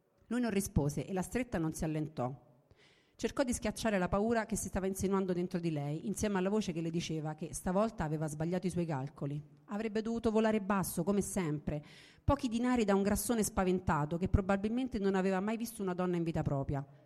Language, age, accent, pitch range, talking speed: Italian, 40-59, native, 155-210 Hz, 200 wpm